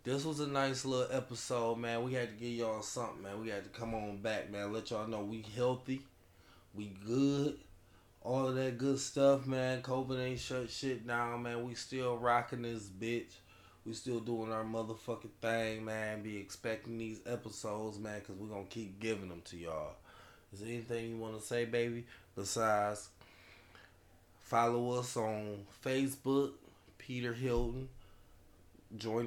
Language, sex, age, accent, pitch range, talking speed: English, male, 20-39, American, 100-125 Hz, 170 wpm